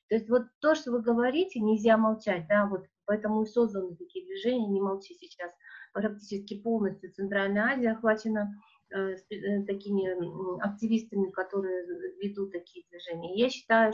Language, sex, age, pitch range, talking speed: Russian, female, 30-49, 195-235 Hz, 150 wpm